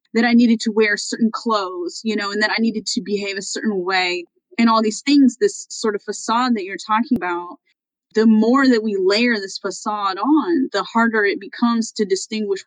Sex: female